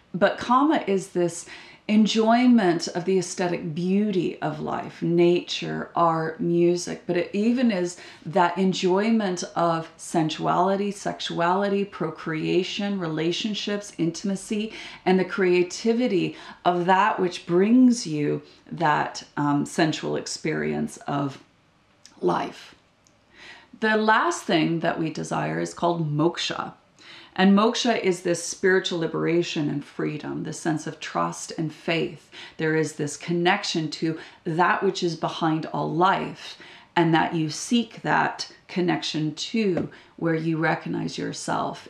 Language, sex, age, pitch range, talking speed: English, female, 30-49, 165-205 Hz, 120 wpm